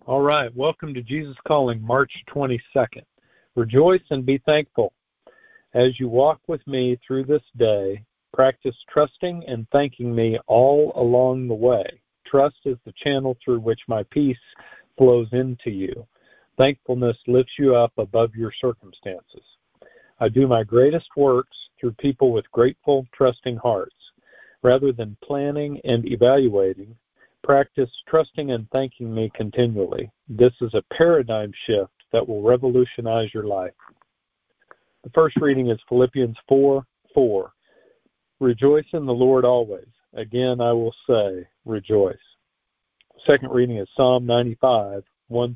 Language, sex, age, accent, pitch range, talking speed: English, male, 50-69, American, 115-140 Hz, 135 wpm